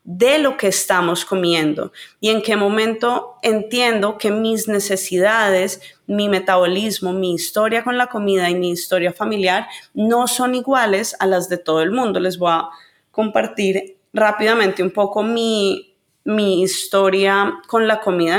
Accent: Colombian